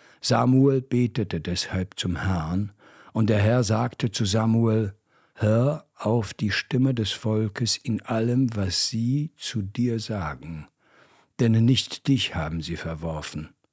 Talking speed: 130 wpm